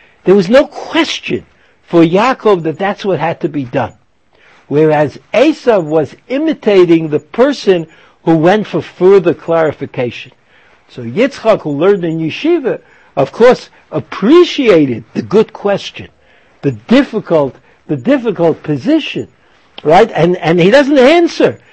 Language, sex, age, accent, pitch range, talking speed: English, male, 60-79, American, 155-235 Hz, 130 wpm